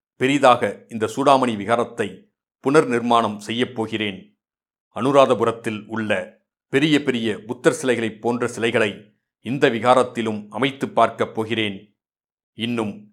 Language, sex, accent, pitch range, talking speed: Tamil, male, native, 110-125 Hz, 95 wpm